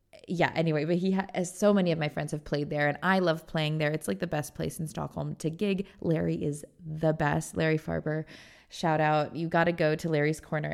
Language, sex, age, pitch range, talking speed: English, female, 20-39, 155-185 Hz, 240 wpm